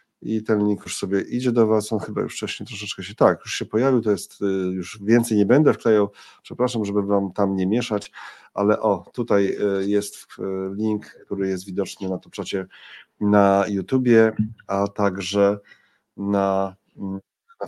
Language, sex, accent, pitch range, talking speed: Polish, male, native, 100-120 Hz, 165 wpm